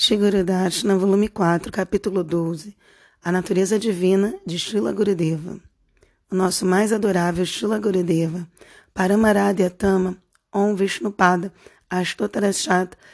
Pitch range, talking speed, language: 185-210 Hz, 95 wpm, Portuguese